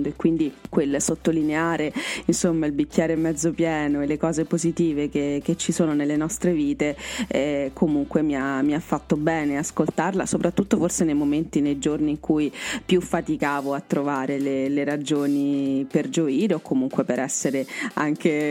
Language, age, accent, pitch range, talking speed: Italian, 30-49, native, 145-165 Hz, 165 wpm